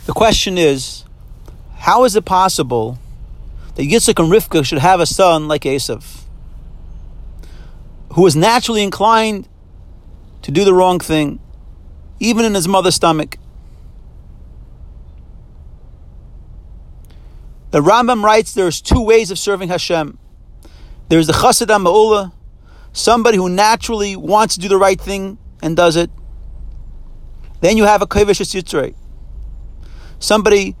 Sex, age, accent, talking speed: male, 40-59, American, 120 wpm